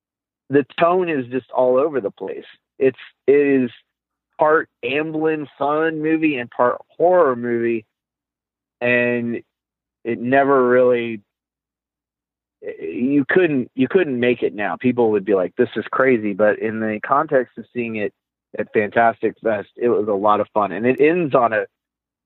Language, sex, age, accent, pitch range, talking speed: English, male, 40-59, American, 120-160 Hz, 155 wpm